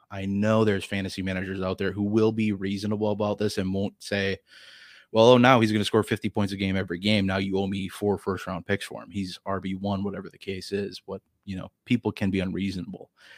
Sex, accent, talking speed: male, American, 230 wpm